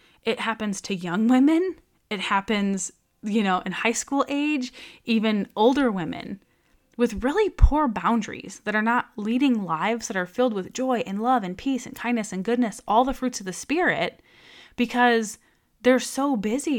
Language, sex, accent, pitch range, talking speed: English, female, American, 195-245 Hz, 170 wpm